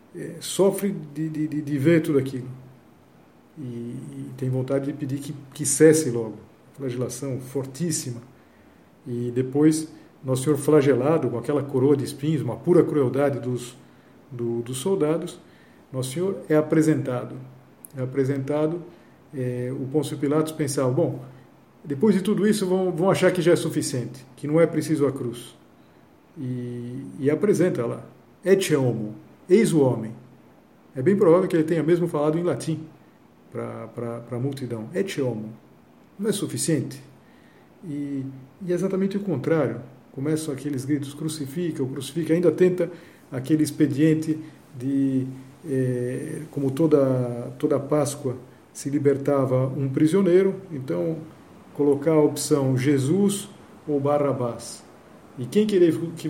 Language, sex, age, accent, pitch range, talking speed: Portuguese, male, 50-69, Brazilian, 130-160 Hz, 135 wpm